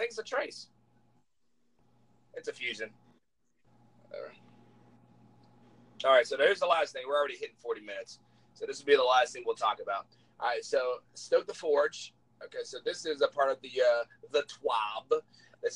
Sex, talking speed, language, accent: male, 185 wpm, English, American